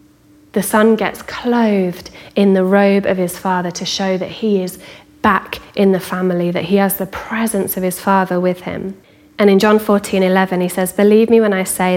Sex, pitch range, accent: female, 180-200 Hz, British